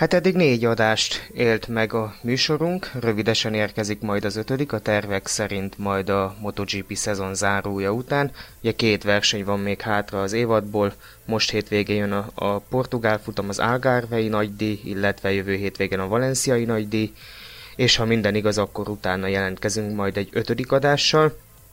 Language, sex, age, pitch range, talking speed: Hungarian, male, 20-39, 100-115 Hz, 155 wpm